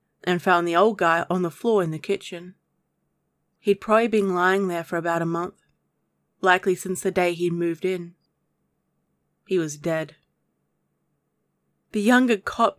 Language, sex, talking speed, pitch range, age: English, female, 155 wpm, 180-210 Hz, 20-39